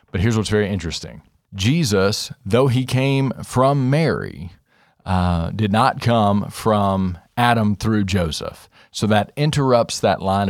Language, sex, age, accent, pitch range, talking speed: English, male, 40-59, American, 95-120 Hz, 135 wpm